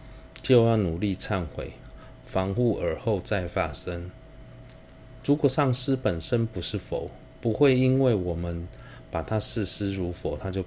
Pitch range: 90-130 Hz